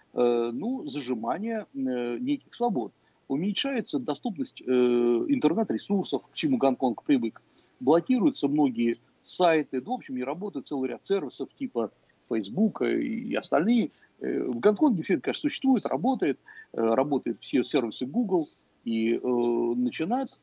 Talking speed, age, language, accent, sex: 130 wpm, 50-69, Russian, native, male